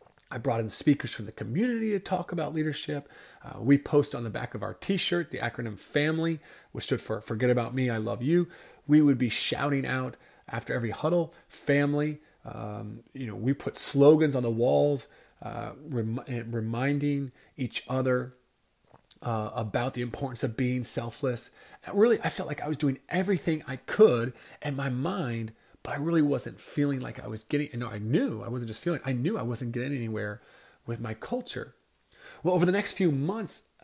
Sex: male